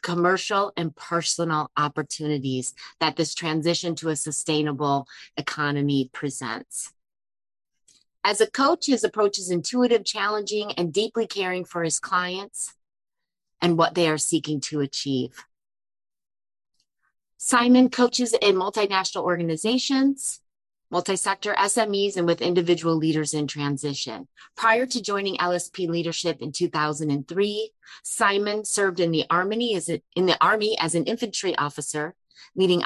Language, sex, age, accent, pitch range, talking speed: English, female, 30-49, American, 155-205 Hz, 125 wpm